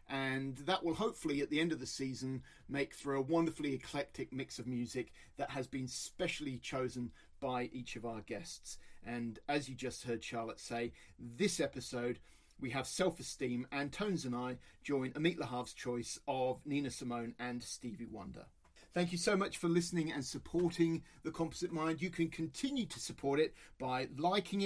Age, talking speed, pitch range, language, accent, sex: 40-59, 180 wpm, 130-170 Hz, English, British, male